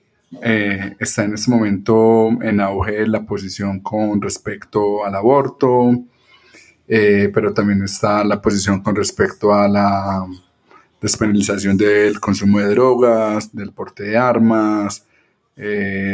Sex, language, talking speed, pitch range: male, Spanish, 125 wpm, 100-130 Hz